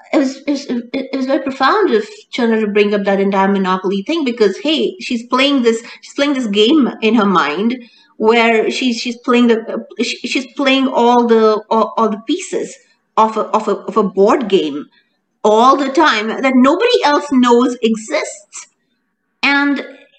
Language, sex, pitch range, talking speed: English, female, 215-290 Hz, 175 wpm